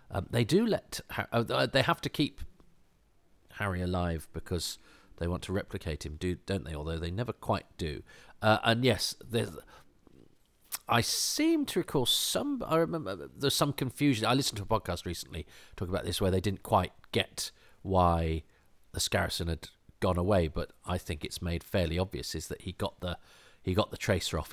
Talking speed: 185 wpm